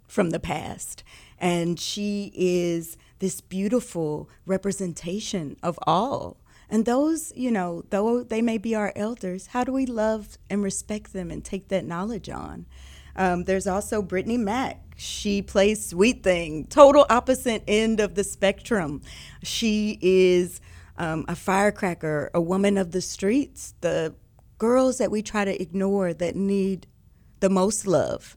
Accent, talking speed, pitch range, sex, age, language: American, 150 wpm, 175-215 Hz, female, 30-49, English